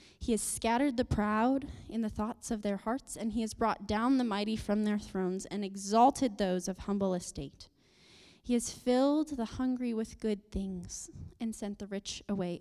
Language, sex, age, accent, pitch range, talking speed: English, female, 10-29, American, 195-255 Hz, 190 wpm